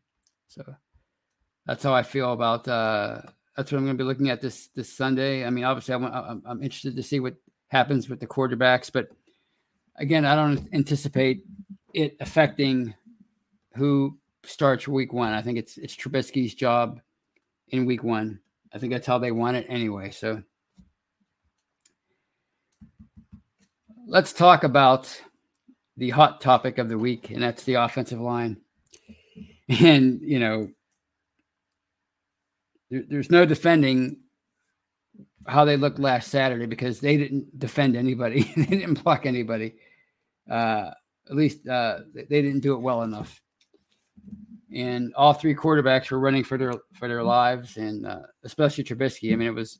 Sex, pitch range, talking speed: male, 120-145 Hz, 150 wpm